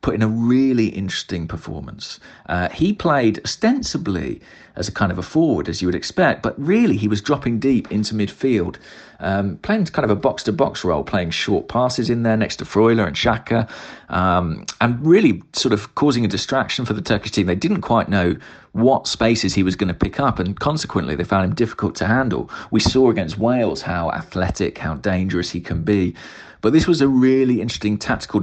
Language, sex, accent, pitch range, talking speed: English, male, British, 95-120 Hz, 200 wpm